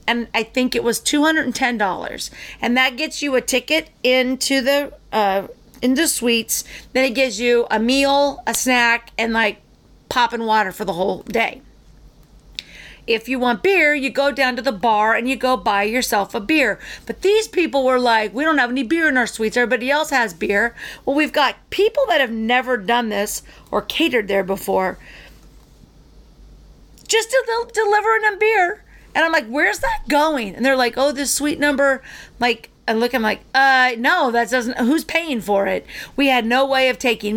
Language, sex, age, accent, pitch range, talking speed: English, female, 40-59, American, 220-280 Hz, 185 wpm